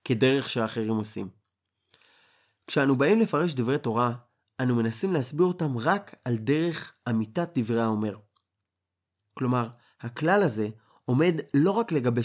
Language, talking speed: Hebrew, 120 wpm